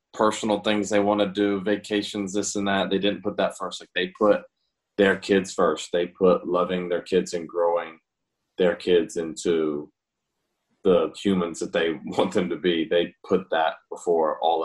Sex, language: male, English